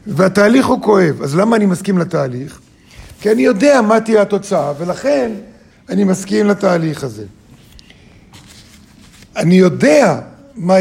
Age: 50-69